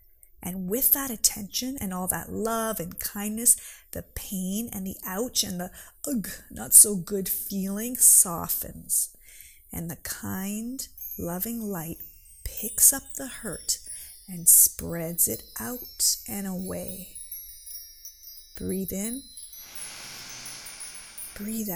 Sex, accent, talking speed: female, American, 105 wpm